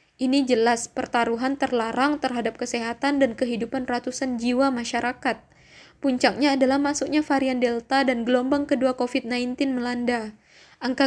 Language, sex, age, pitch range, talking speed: Indonesian, female, 20-39, 245-275 Hz, 120 wpm